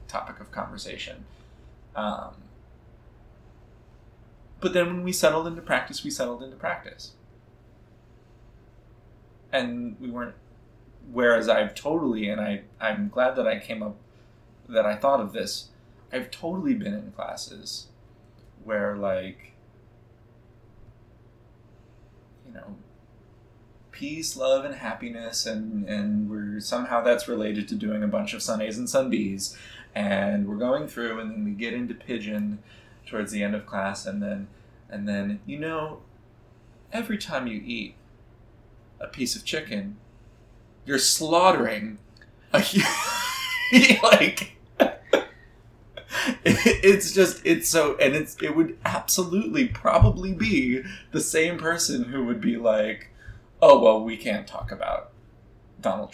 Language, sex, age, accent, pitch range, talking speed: English, male, 20-39, American, 110-140 Hz, 130 wpm